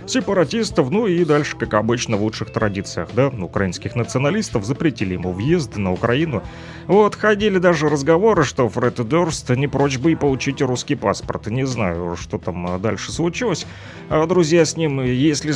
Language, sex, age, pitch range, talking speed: Russian, male, 30-49, 105-155 Hz, 160 wpm